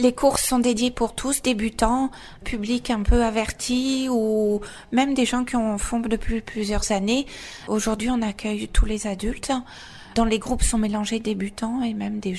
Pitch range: 210-240 Hz